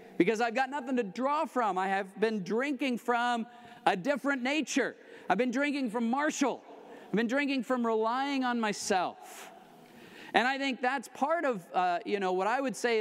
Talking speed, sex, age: 185 wpm, male, 40-59